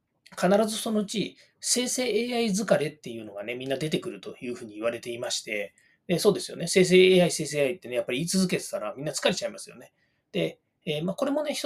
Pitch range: 135-215 Hz